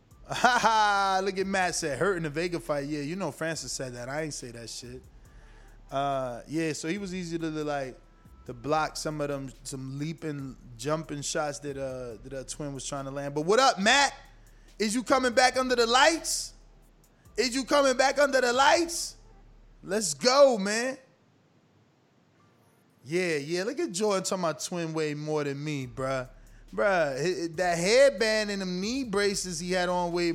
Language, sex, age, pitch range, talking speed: English, male, 20-39, 140-190 Hz, 180 wpm